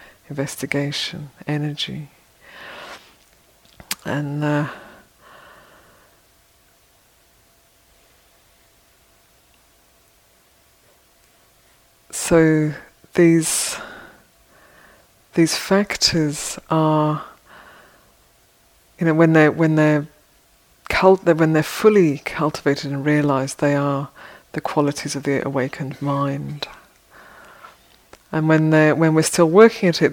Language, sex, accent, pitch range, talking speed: English, female, British, 145-165 Hz, 75 wpm